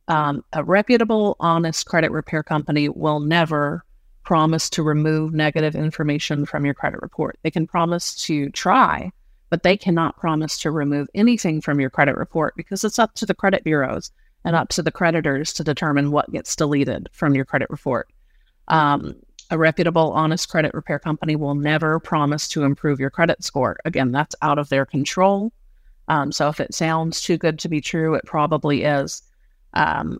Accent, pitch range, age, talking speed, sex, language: American, 145-165 Hz, 30-49, 180 wpm, female, English